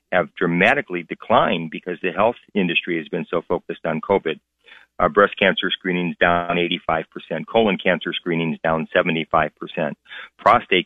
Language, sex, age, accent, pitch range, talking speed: English, male, 40-59, American, 85-100 Hz, 140 wpm